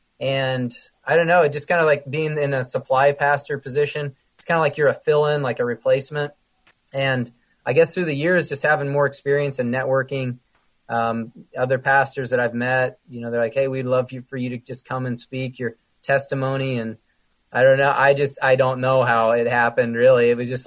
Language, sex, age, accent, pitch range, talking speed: English, male, 20-39, American, 125-145 Hz, 220 wpm